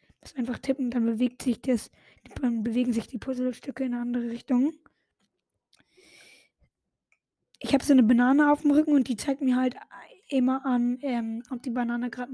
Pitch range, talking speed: 245-290 Hz, 175 wpm